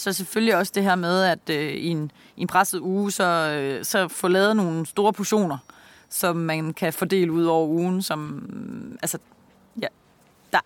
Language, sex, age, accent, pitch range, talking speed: Danish, female, 30-49, native, 160-195 Hz, 190 wpm